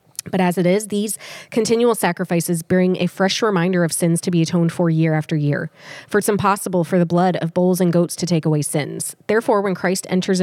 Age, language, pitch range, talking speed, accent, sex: 20-39, English, 165-190 Hz, 220 wpm, American, female